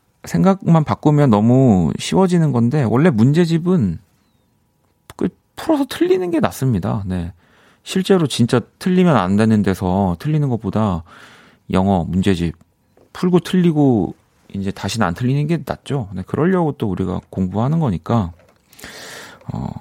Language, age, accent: Korean, 40-59, native